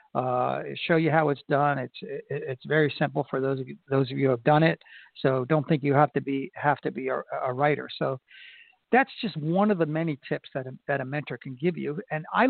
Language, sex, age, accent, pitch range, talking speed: English, male, 60-79, American, 135-165 Hz, 250 wpm